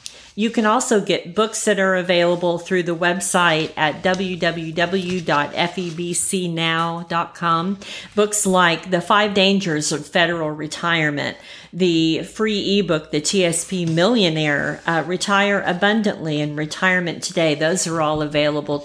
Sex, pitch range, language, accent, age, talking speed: female, 160-195 Hz, English, American, 50-69, 120 wpm